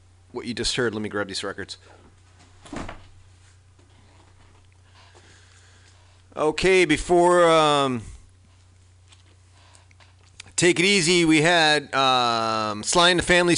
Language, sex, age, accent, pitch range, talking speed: English, male, 40-59, American, 95-130 Hz, 95 wpm